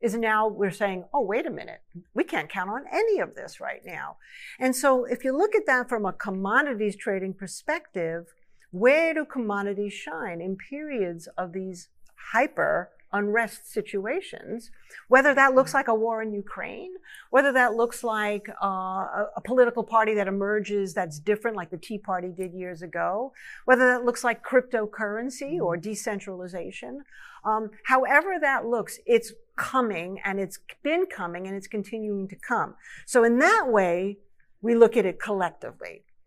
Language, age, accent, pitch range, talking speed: English, 50-69, American, 195-255 Hz, 160 wpm